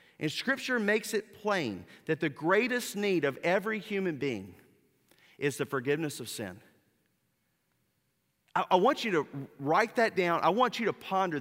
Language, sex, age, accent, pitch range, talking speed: English, male, 40-59, American, 135-200 Hz, 165 wpm